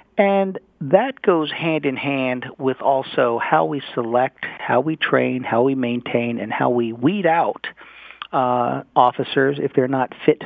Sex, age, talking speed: male, 50-69, 160 wpm